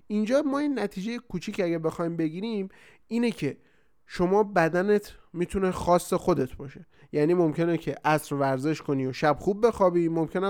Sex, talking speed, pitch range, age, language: male, 155 wpm, 150-195 Hz, 30-49, Persian